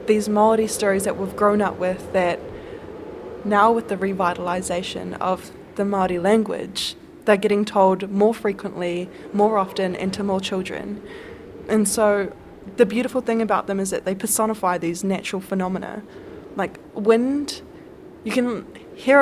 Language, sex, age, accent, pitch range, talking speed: English, female, 20-39, Australian, 190-225 Hz, 145 wpm